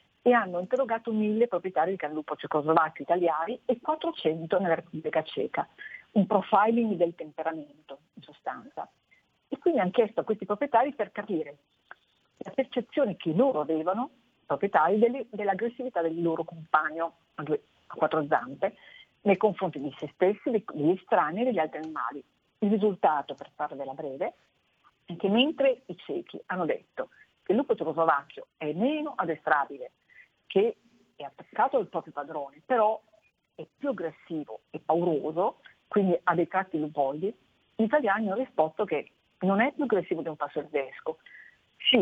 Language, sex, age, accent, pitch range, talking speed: Italian, female, 50-69, native, 160-235 Hz, 155 wpm